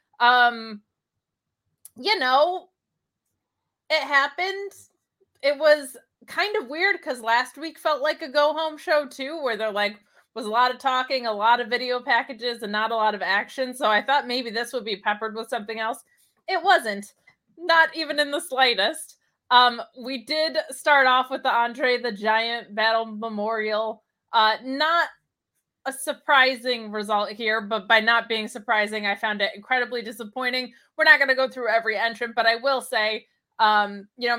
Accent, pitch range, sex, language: American, 220-280 Hz, female, English